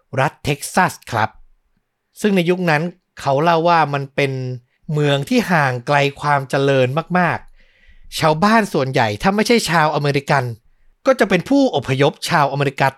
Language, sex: Thai, male